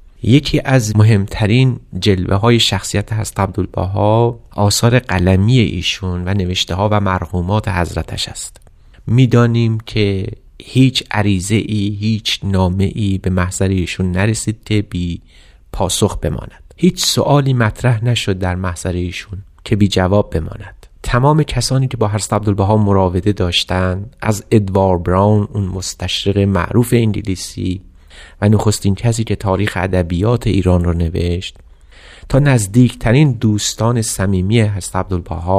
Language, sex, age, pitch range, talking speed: Persian, male, 30-49, 95-115 Hz, 120 wpm